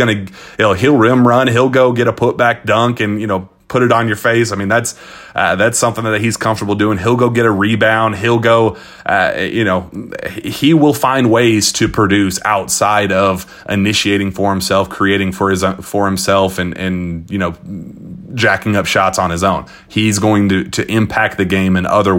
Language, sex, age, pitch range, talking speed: English, male, 30-49, 90-105 Hz, 205 wpm